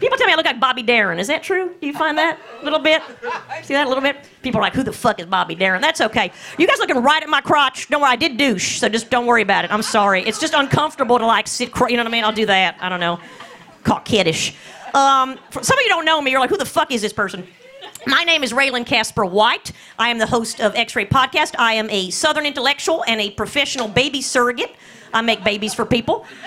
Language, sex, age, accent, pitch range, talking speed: English, female, 40-59, American, 230-305 Hz, 270 wpm